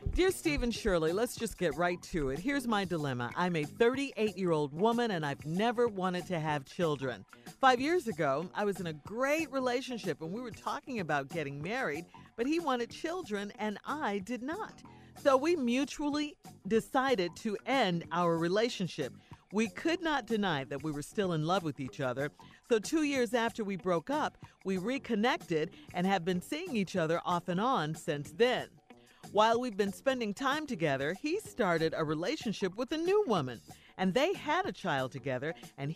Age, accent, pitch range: 50-69, American, 165-265 Hz